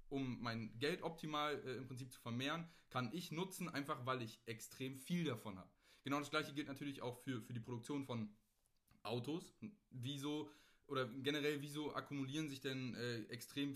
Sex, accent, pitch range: male, German, 120-150 Hz